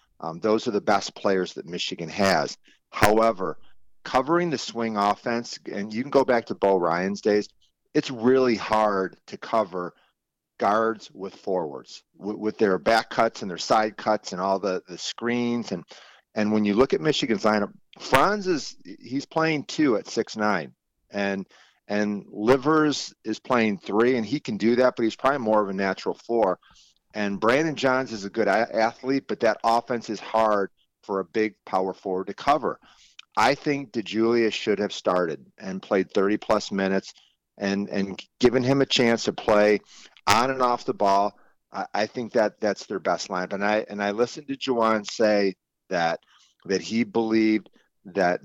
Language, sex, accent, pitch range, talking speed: English, male, American, 100-120 Hz, 175 wpm